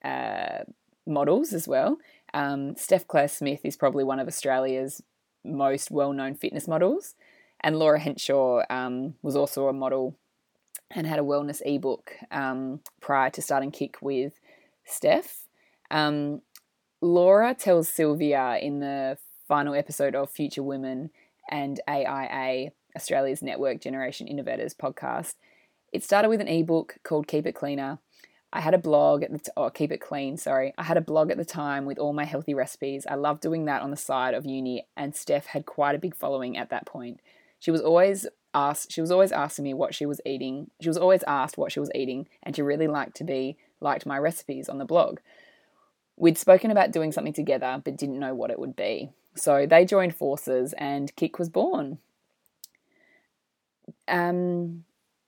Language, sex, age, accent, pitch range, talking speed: English, female, 20-39, Australian, 135-165 Hz, 175 wpm